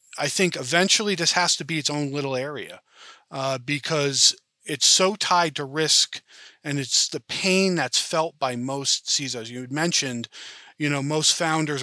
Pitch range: 125-160 Hz